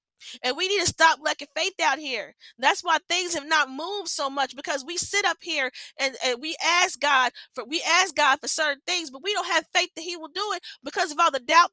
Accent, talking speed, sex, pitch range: American, 250 wpm, female, 275-350 Hz